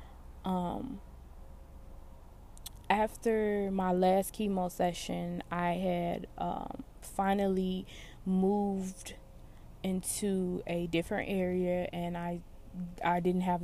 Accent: American